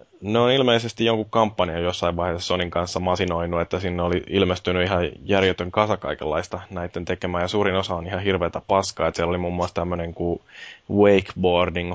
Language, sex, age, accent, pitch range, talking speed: Finnish, male, 20-39, native, 85-95 Hz, 175 wpm